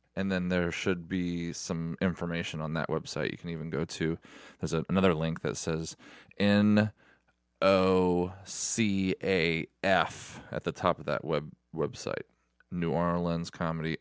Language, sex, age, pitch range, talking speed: English, male, 20-39, 85-100 Hz, 130 wpm